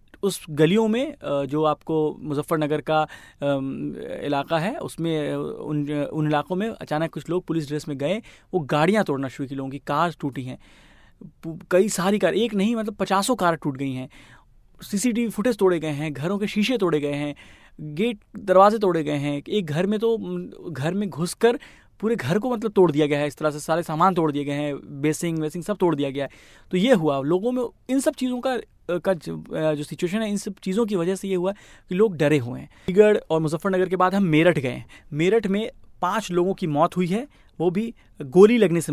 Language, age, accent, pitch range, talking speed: Hindi, 30-49, native, 150-205 Hz, 215 wpm